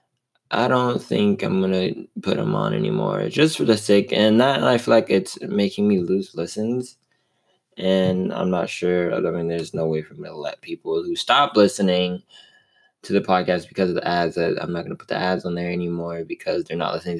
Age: 20-39